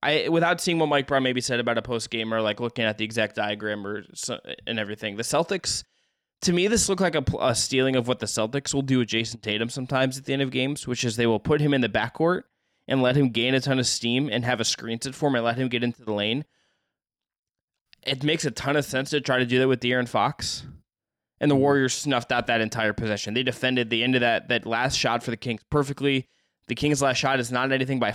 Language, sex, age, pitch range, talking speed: English, male, 20-39, 120-140 Hz, 260 wpm